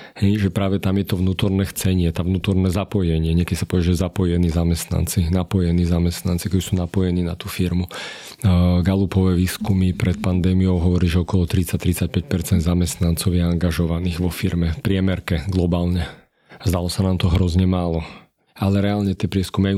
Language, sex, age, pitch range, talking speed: Slovak, male, 40-59, 90-100 Hz, 150 wpm